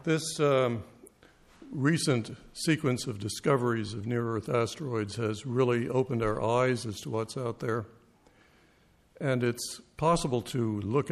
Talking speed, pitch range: 135 wpm, 110-135 Hz